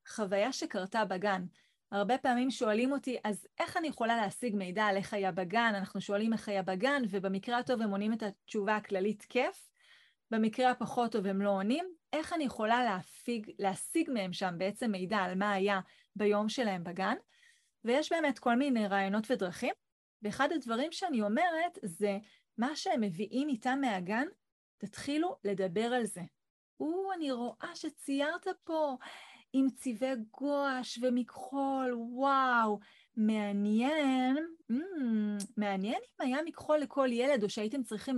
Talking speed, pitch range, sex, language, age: 145 wpm, 210-275 Hz, female, Hebrew, 30-49